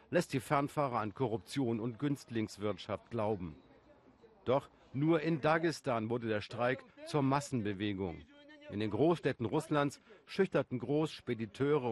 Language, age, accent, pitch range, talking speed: German, 50-69, German, 115-150 Hz, 115 wpm